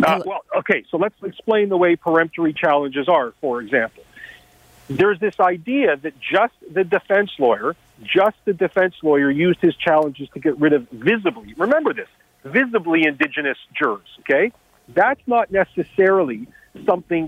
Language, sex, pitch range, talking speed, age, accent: English, male, 160-220 Hz, 150 wpm, 40-59, American